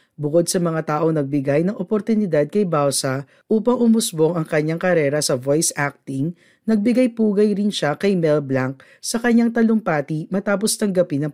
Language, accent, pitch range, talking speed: Filipino, native, 145-205 Hz, 155 wpm